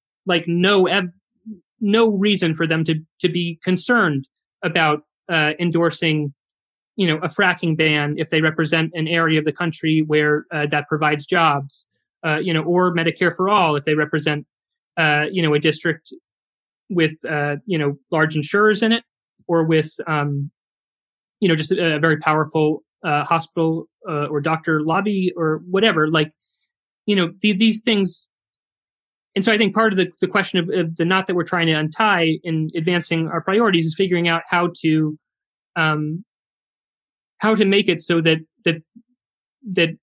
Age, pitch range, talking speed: 30-49, 155-185 Hz, 170 wpm